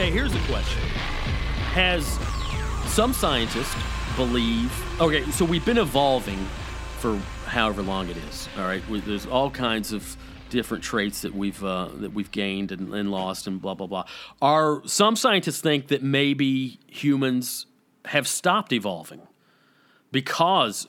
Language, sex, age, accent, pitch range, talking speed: English, male, 40-59, American, 105-145 Hz, 145 wpm